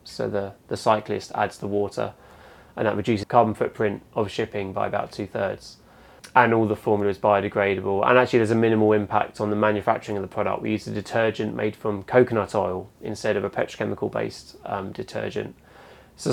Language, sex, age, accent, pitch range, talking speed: English, male, 20-39, British, 105-120 Hz, 185 wpm